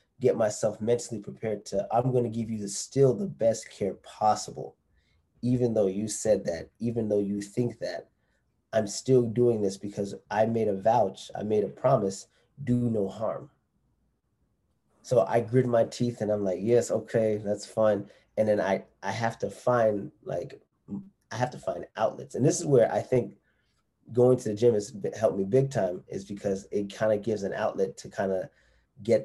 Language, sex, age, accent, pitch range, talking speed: English, male, 30-49, American, 100-120 Hz, 195 wpm